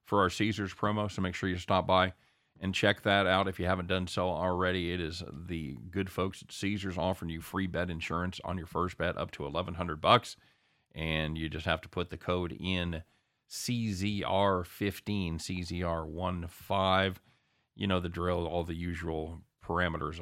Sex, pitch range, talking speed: male, 85-100 Hz, 175 wpm